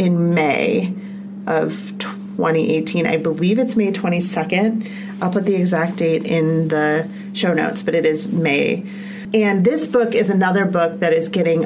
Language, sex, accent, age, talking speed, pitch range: English, female, American, 30-49, 160 wpm, 165-200 Hz